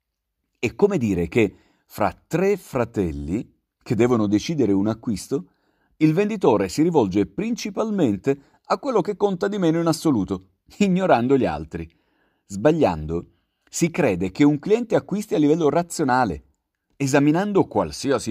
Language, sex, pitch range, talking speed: Italian, male, 95-155 Hz, 130 wpm